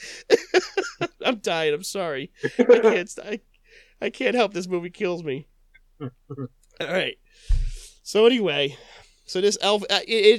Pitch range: 125-185 Hz